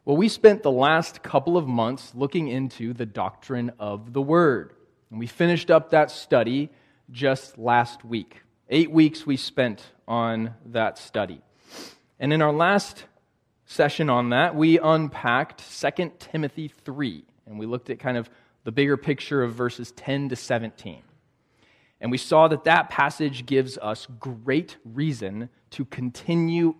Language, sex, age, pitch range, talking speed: English, male, 20-39, 120-160 Hz, 155 wpm